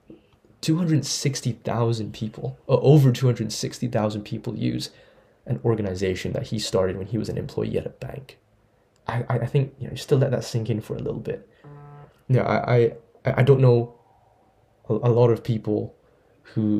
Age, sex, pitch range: 20-39, male, 110-130 Hz